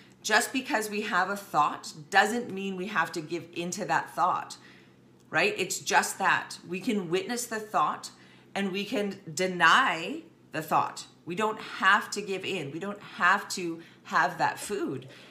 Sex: female